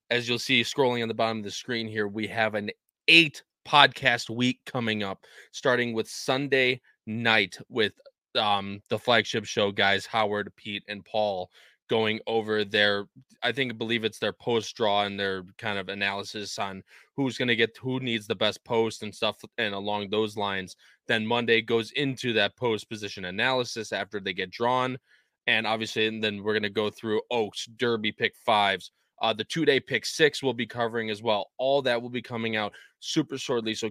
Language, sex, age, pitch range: English, male, 20-39, 105-120 Hz